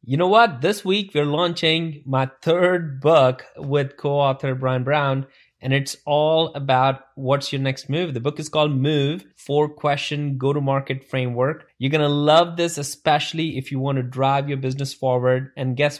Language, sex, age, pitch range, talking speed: English, male, 20-39, 130-160 Hz, 175 wpm